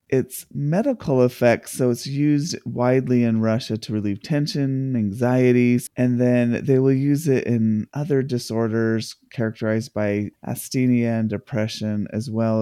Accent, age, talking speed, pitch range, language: American, 30-49, 140 wpm, 110-125 Hz, English